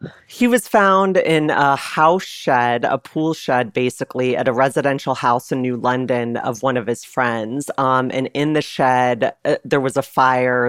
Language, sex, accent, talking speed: English, female, American, 185 wpm